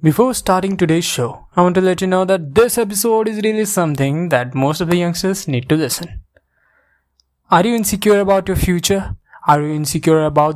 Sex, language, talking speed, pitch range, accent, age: male, English, 195 wpm, 125-185 Hz, Indian, 20-39